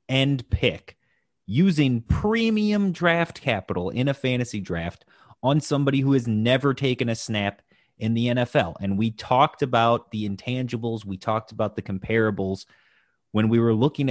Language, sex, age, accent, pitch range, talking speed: English, male, 30-49, American, 115-160 Hz, 155 wpm